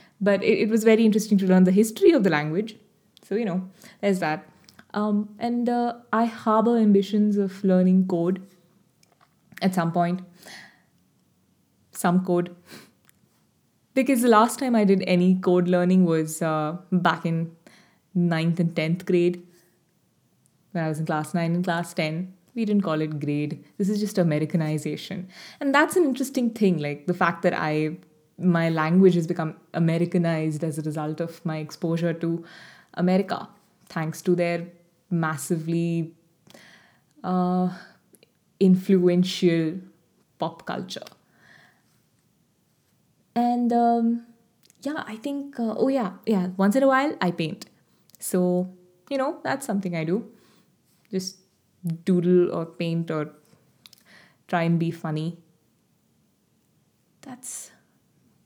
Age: 20-39